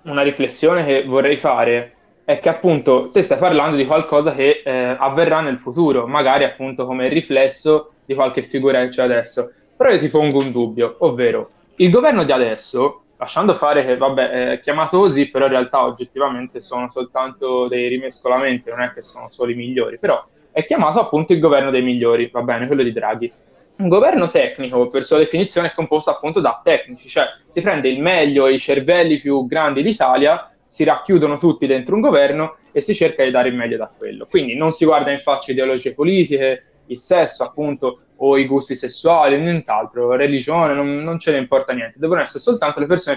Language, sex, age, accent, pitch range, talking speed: Italian, male, 20-39, native, 130-160 Hz, 195 wpm